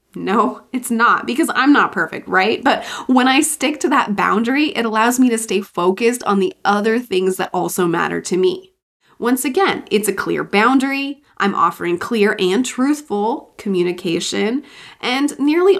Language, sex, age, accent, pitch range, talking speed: English, female, 20-39, American, 190-275 Hz, 165 wpm